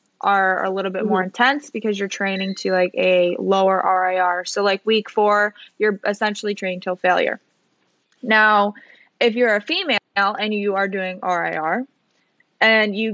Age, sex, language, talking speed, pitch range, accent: 20-39, female, English, 160 wpm, 190-220 Hz, American